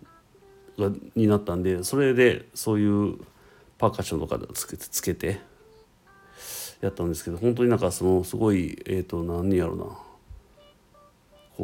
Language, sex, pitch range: Japanese, male, 85-120 Hz